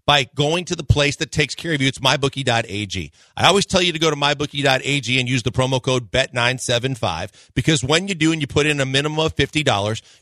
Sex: male